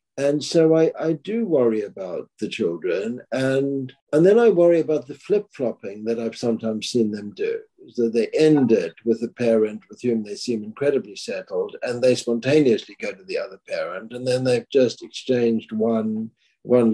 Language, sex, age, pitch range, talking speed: English, male, 60-79, 115-150 Hz, 180 wpm